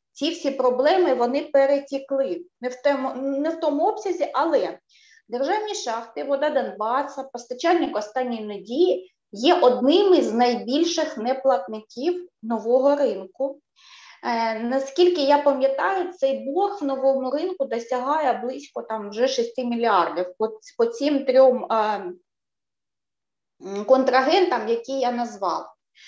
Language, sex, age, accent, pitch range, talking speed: Ukrainian, female, 20-39, native, 240-295 Hz, 100 wpm